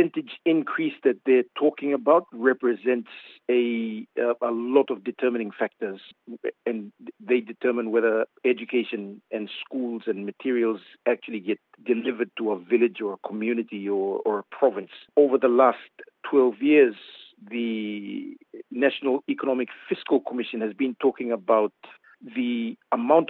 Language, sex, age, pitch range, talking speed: English, male, 50-69, 115-140 Hz, 135 wpm